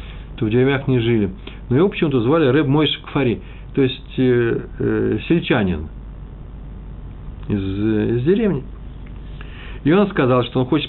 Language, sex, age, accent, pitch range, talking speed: Russian, male, 40-59, native, 110-150 Hz, 155 wpm